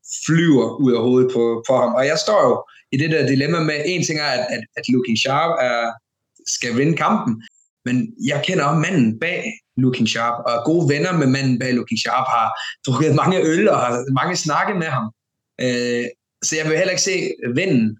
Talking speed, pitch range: 205 wpm, 125-155 Hz